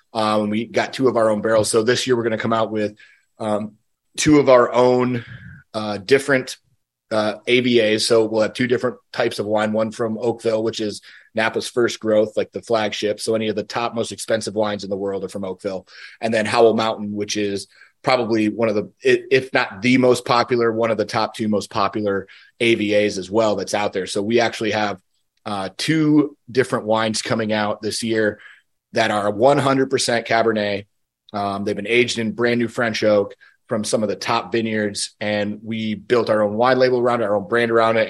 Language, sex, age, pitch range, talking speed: English, male, 30-49, 105-120 Hz, 205 wpm